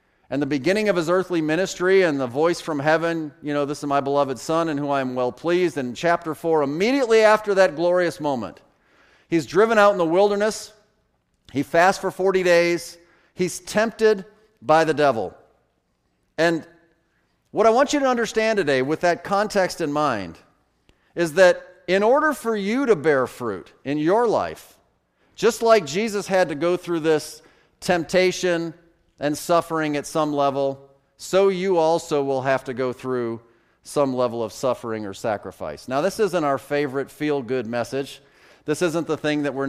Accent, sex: American, male